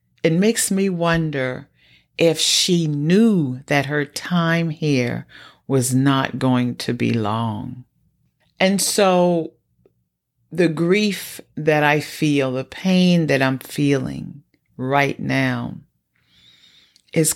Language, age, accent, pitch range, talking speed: English, 40-59, American, 125-165 Hz, 110 wpm